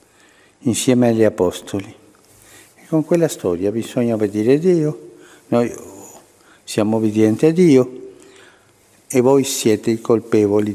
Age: 60-79